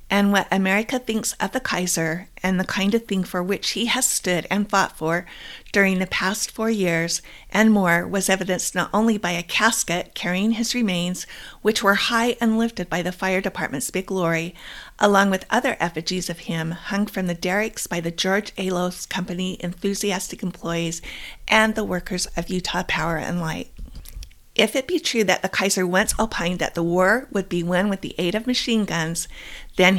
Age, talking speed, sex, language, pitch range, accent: 50-69, 190 wpm, female, English, 175-215 Hz, American